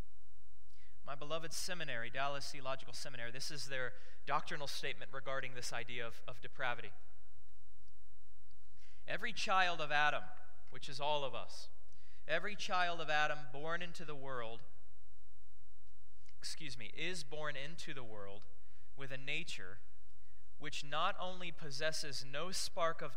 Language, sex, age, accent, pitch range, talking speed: English, male, 20-39, American, 90-150 Hz, 130 wpm